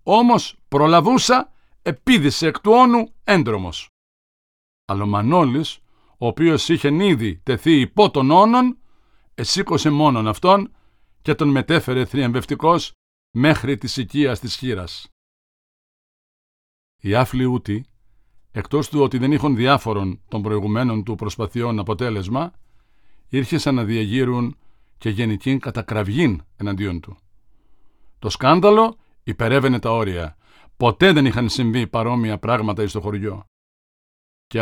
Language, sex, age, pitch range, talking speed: Greek, male, 60-79, 105-145 Hz, 110 wpm